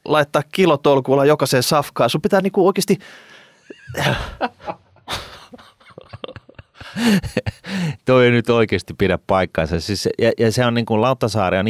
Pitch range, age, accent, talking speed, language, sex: 85-105 Hz, 30-49, native, 115 wpm, Finnish, male